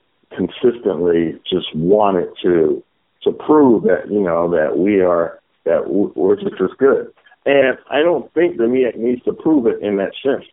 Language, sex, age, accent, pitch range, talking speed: English, male, 50-69, American, 100-160 Hz, 170 wpm